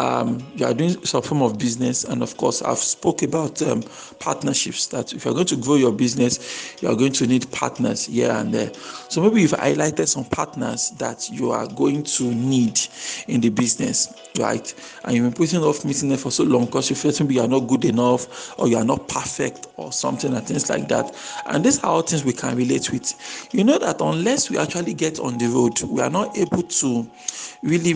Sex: male